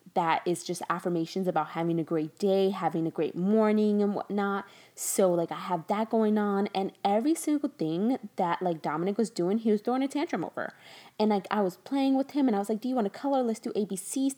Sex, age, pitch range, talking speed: female, 20-39, 180-245 Hz, 235 wpm